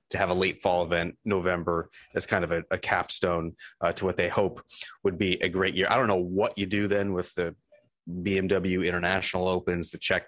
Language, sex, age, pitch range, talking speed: English, male, 30-49, 90-100 Hz, 215 wpm